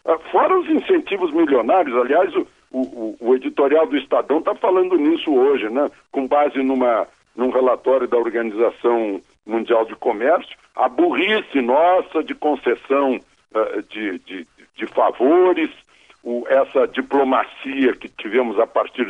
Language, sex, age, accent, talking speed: Portuguese, male, 60-79, Brazilian, 125 wpm